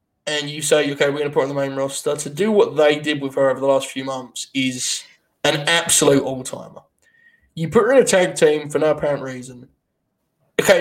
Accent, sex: British, male